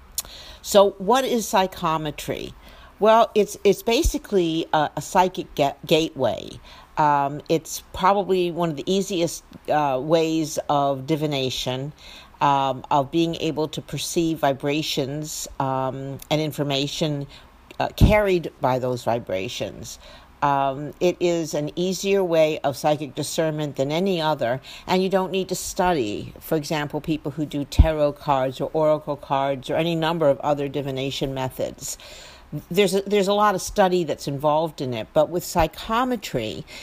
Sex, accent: female, American